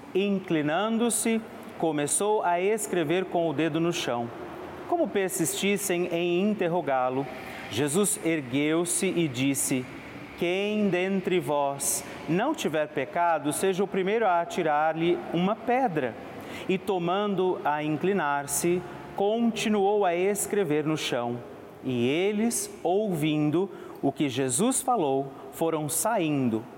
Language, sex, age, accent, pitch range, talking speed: Portuguese, male, 40-59, Brazilian, 140-195 Hz, 110 wpm